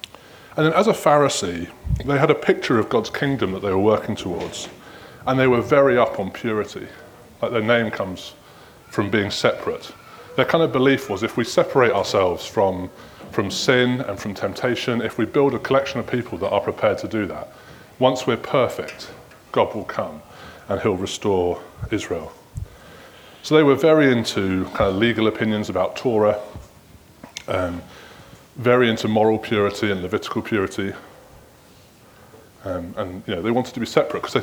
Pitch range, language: 105-130 Hz, English